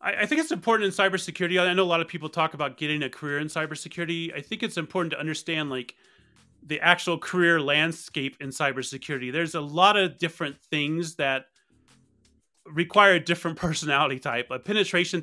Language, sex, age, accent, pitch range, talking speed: English, male, 30-49, American, 135-175 Hz, 180 wpm